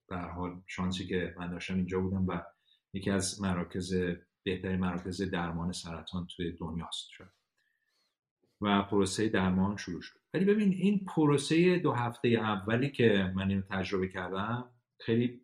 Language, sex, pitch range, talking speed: Persian, male, 90-110 Hz, 150 wpm